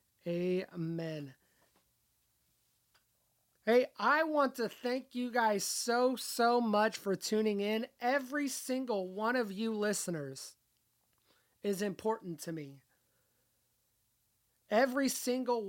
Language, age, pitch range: English, 30-49, 170-220 Hz